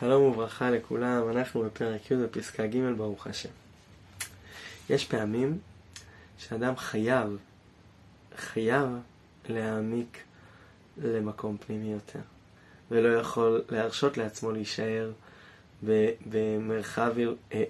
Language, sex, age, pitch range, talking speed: Hebrew, male, 20-39, 110-155 Hz, 85 wpm